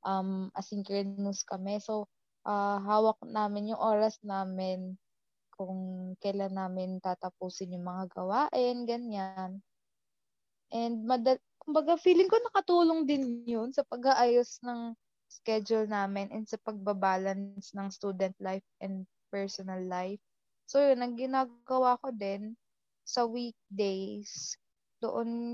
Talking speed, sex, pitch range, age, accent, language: 115 wpm, female, 195-240 Hz, 20-39, native, Filipino